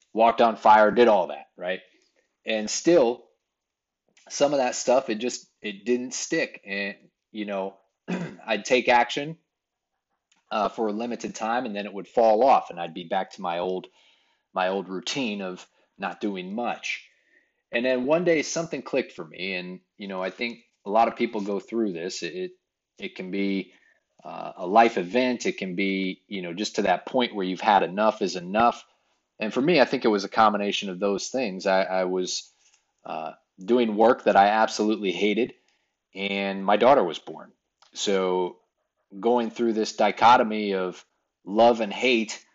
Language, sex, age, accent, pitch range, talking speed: English, male, 30-49, American, 100-120 Hz, 180 wpm